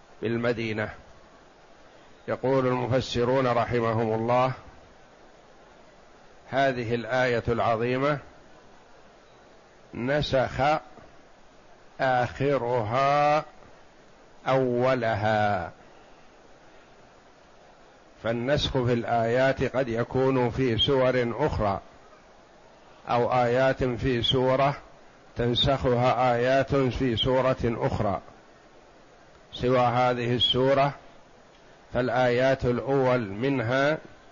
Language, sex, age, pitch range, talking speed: Arabic, male, 50-69, 120-135 Hz, 60 wpm